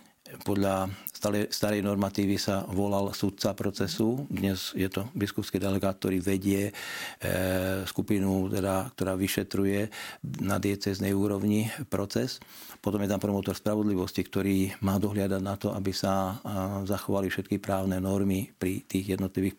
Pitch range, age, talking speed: 95-105 Hz, 50-69, 125 wpm